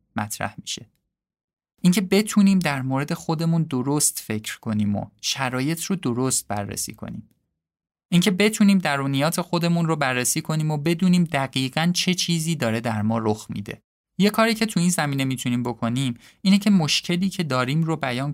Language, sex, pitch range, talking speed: Persian, male, 115-175 Hz, 155 wpm